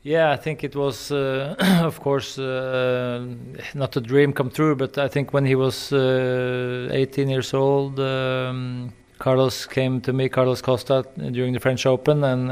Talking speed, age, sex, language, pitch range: 175 wpm, 20-39, male, English, 125-135 Hz